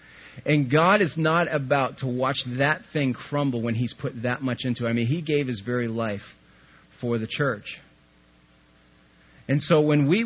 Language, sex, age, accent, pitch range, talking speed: English, male, 40-59, American, 120-155 Hz, 180 wpm